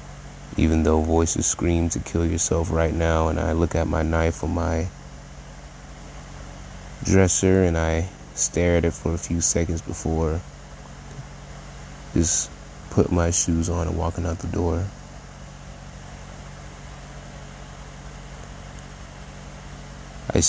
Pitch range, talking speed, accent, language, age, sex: 80-85 Hz, 115 wpm, American, English, 30-49, male